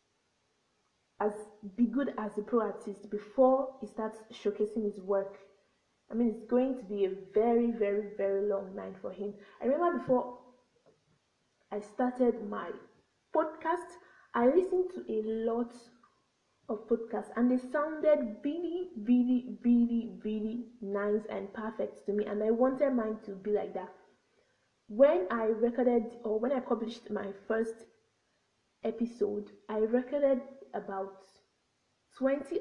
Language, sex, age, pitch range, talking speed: English, female, 20-39, 205-245 Hz, 140 wpm